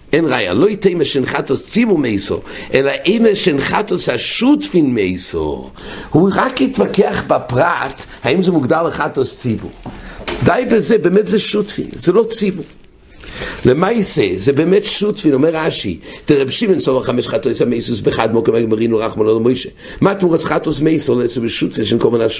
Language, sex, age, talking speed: English, male, 60-79, 145 wpm